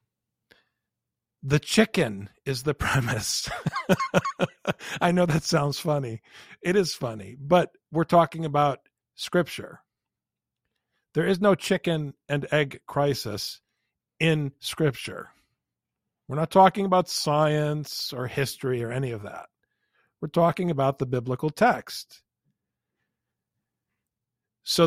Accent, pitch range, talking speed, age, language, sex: American, 120-165 Hz, 110 wpm, 50-69, English, male